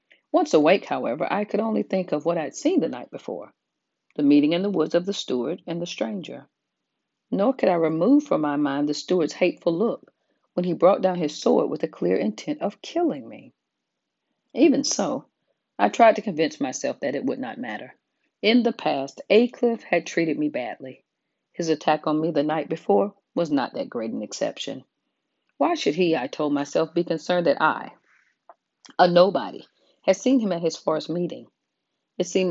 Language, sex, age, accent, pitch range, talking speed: English, female, 40-59, American, 155-220 Hz, 190 wpm